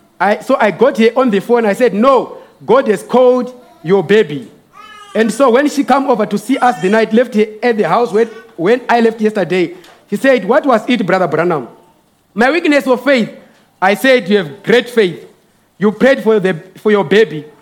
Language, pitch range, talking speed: English, 200-250 Hz, 210 wpm